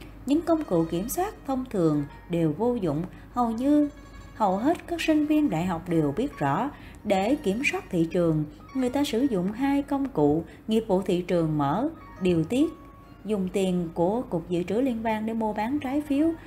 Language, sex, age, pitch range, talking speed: Vietnamese, female, 20-39, 175-275 Hz, 195 wpm